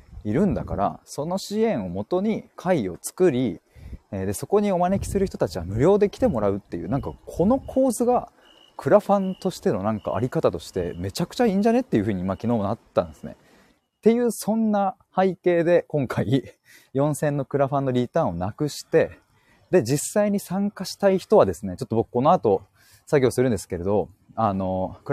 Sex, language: male, Japanese